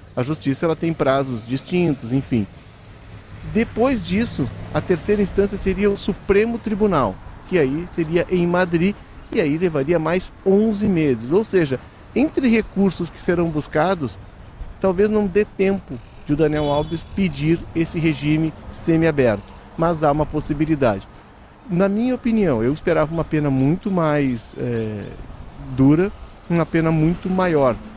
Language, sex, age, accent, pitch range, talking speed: Portuguese, male, 40-59, Brazilian, 135-185 Hz, 135 wpm